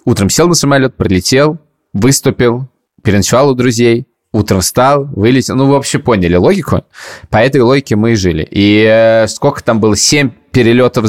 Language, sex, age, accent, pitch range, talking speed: Russian, male, 20-39, native, 105-125 Hz, 155 wpm